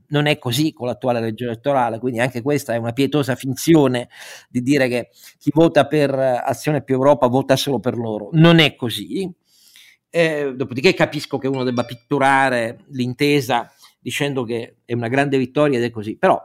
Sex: male